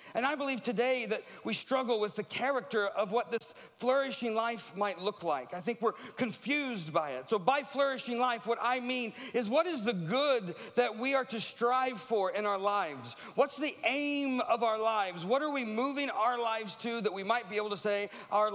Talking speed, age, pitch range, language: 215 wpm, 40-59, 200-260 Hz, English